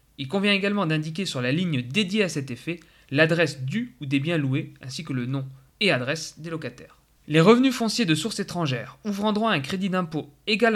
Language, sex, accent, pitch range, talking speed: French, male, French, 140-200 Hz, 210 wpm